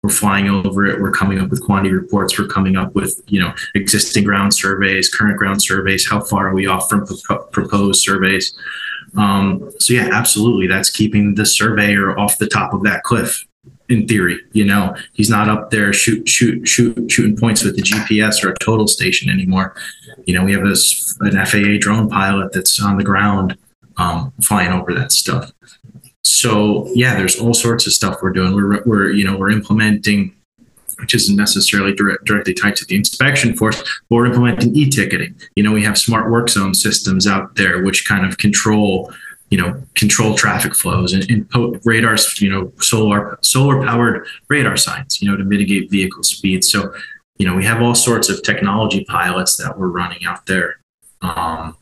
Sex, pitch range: male, 95-110 Hz